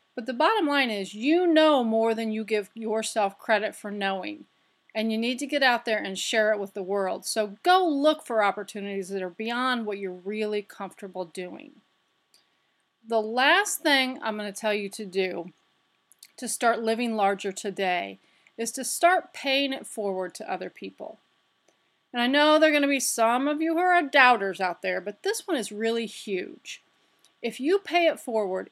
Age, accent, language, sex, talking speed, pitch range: 40-59, American, English, female, 190 wpm, 205-260 Hz